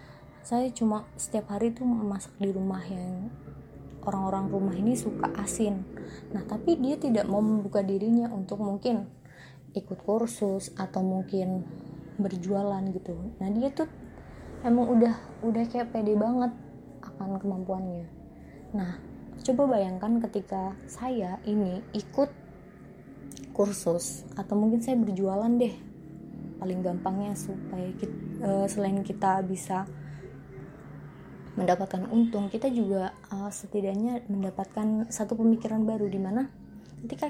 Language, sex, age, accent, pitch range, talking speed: Indonesian, female, 20-39, native, 190-230 Hz, 120 wpm